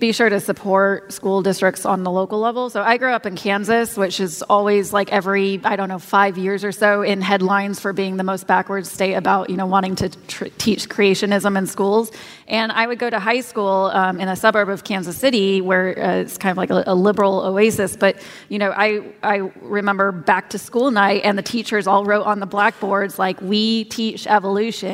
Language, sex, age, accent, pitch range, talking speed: English, female, 20-39, American, 195-215 Hz, 220 wpm